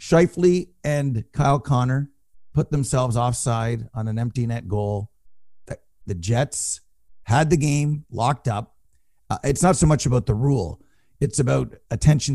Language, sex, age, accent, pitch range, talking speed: English, male, 50-69, American, 125-180 Hz, 150 wpm